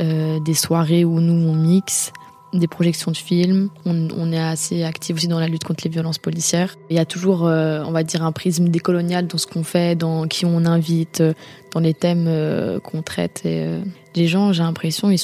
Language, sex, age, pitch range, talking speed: French, female, 20-39, 160-180 Hz, 220 wpm